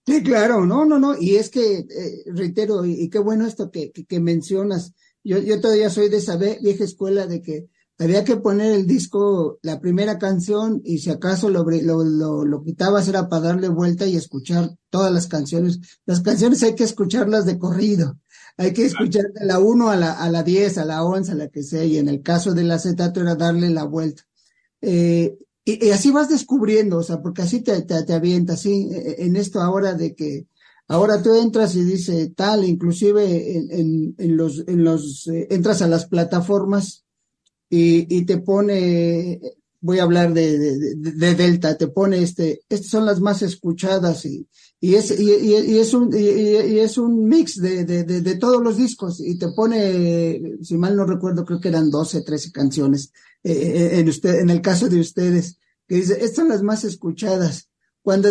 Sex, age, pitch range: male, 50-69, 170-210 Hz